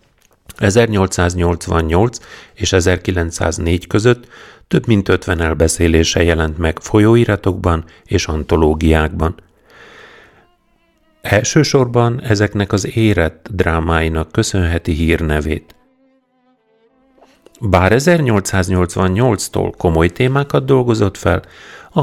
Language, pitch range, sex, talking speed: Hungarian, 80-110 Hz, male, 75 wpm